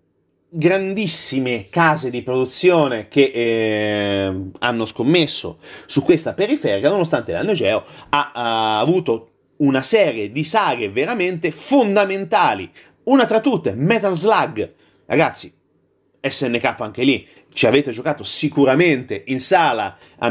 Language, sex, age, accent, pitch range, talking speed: Italian, male, 30-49, native, 115-165 Hz, 115 wpm